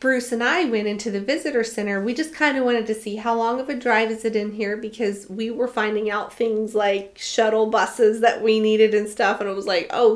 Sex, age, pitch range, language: female, 30-49, 210-290 Hz, English